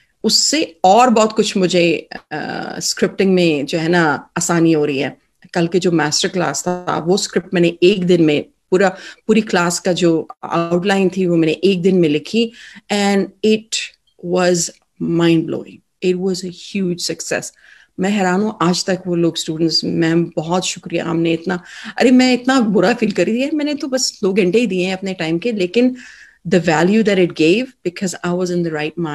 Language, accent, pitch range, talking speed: English, Indian, 170-205 Hz, 85 wpm